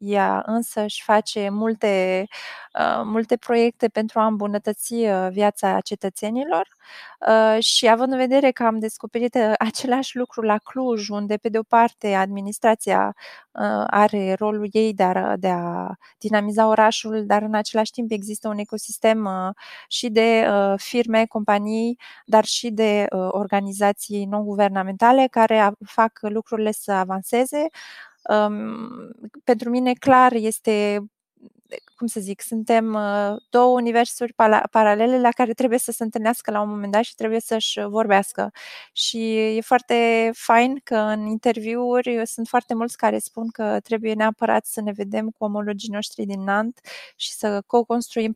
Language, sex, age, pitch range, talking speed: Romanian, female, 20-39, 210-235 Hz, 145 wpm